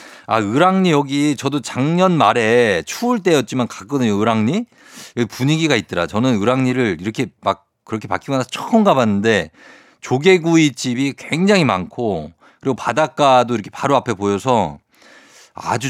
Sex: male